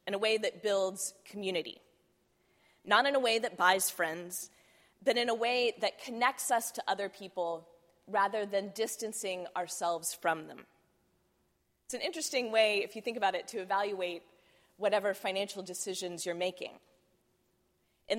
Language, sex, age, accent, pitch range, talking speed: English, female, 20-39, American, 180-215 Hz, 150 wpm